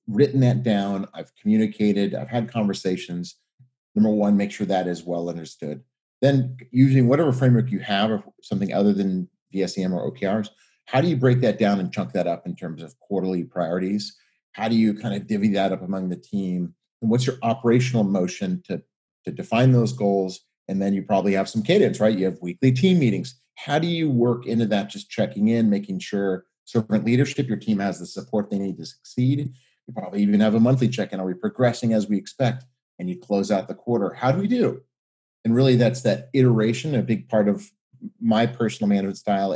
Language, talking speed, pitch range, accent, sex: English, 205 wpm, 100-130 Hz, American, male